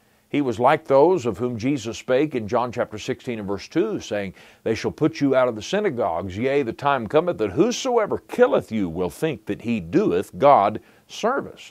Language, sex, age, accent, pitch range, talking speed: English, male, 50-69, American, 105-150 Hz, 200 wpm